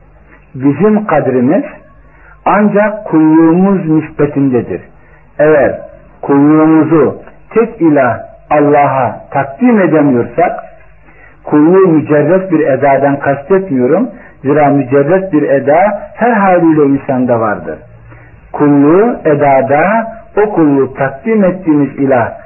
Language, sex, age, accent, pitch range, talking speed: Turkish, male, 60-79, native, 135-185 Hz, 85 wpm